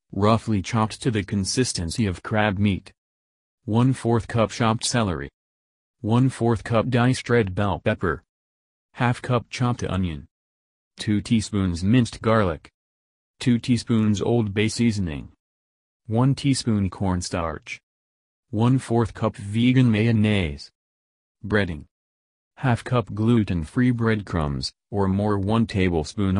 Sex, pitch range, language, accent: male, 85-115 Hz, English, American